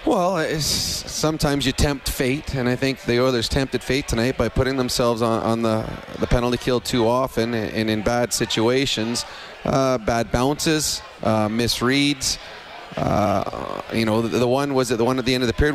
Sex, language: male, English